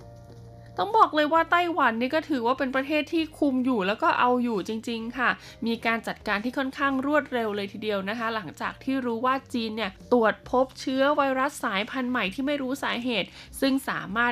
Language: Thai